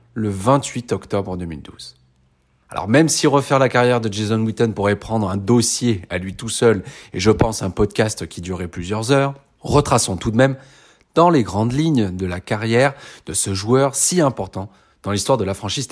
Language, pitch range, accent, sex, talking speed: French, 95-125 Hz, French, male, 190 wpm